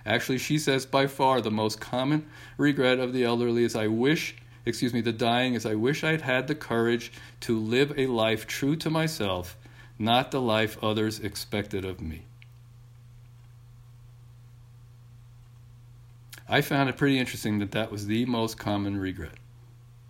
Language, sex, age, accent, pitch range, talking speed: English, male, 50-69, American, 110-125 Hz, 155 wpm